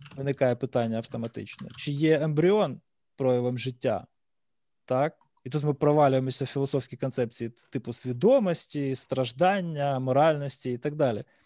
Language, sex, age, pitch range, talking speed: Ukrainian, male, 20-39, 130-165 Hz, 120 wpm